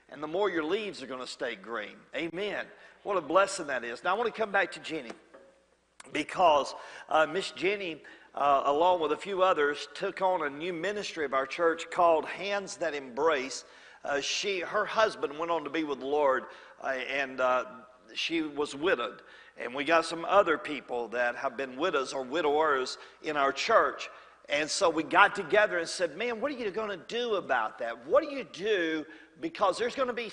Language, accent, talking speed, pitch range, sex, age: English, American, 205 wpm, 150-220 Hz, male, 50-69